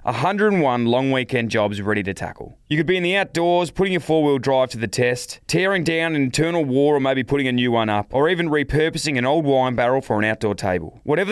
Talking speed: 235 wpm